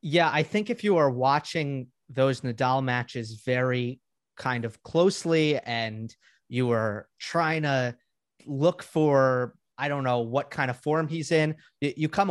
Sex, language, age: male, English, 30-49